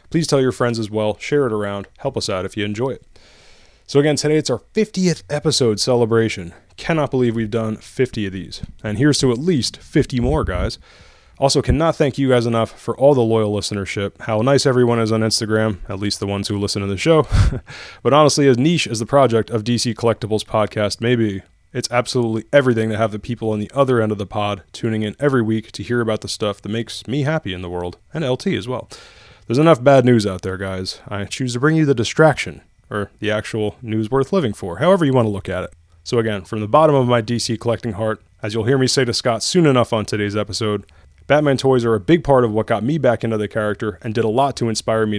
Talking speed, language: 240 wpm, English